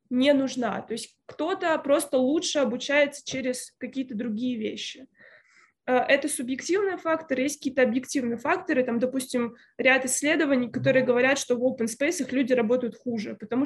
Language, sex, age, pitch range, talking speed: Russian, female, 20-39, 245-290 Hz, 145 wpm